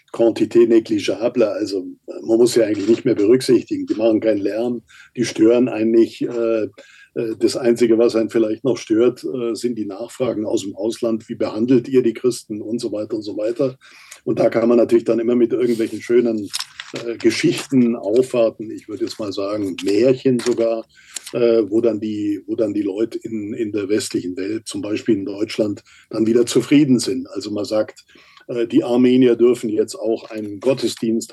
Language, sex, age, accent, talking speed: German, male, 50-69, German, 170 wpm